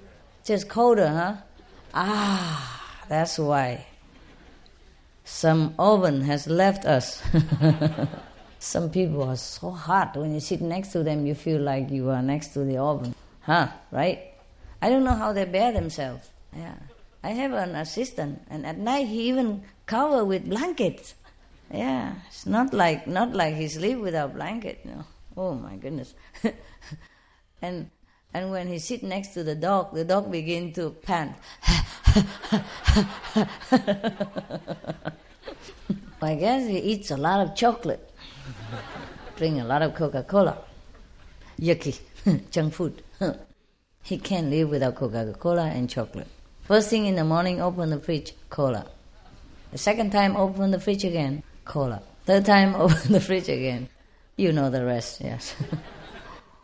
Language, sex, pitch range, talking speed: English, female, 145-195 Hz, 140 wpm